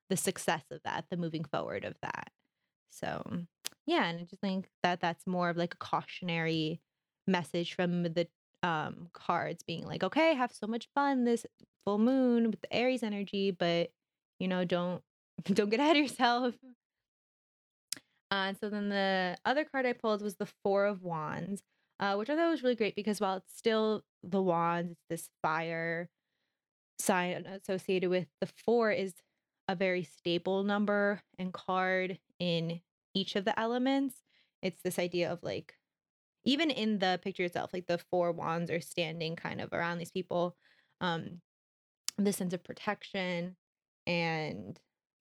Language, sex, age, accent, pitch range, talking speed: English, female, 20-39, American, 170-205 Hz, 165 wpm